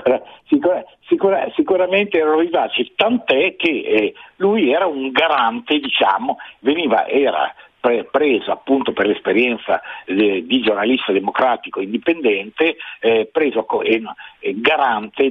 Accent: native